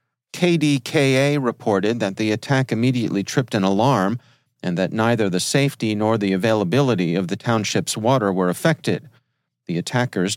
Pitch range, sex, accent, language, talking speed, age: 100-130 Hz, male, American, English, 145 wpm, 40-59